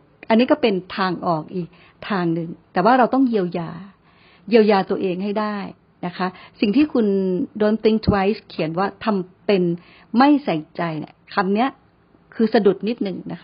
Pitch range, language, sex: 180-240 Hz, Thai, female